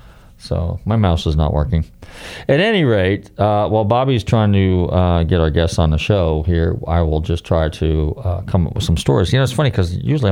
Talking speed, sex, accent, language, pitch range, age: 225 wpm, male, American, English, 85-115 Hz, 40-59